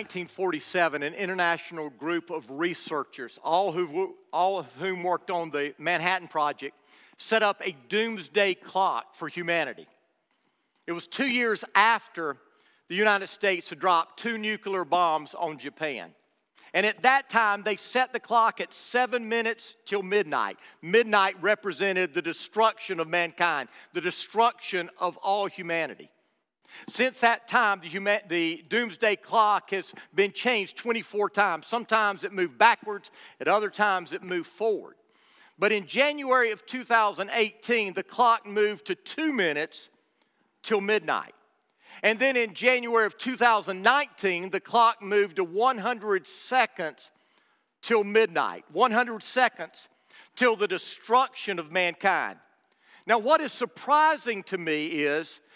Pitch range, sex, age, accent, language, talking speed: 175-230 Hz, male, 50-69, American, English, 135 wpm